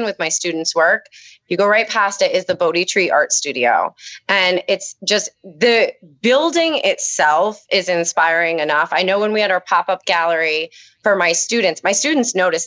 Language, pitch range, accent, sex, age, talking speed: English, 170-210 Hz, American, female, 20-39, 180 wpm